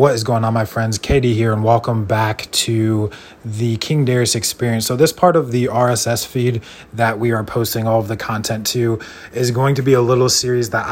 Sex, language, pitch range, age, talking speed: male, English, 110-125 Hz, 20-39, 220 wpm